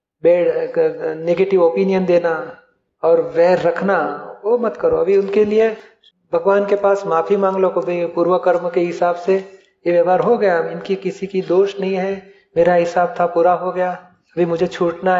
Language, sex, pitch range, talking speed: Hindi, male, 175-200 Hz, 175 wpm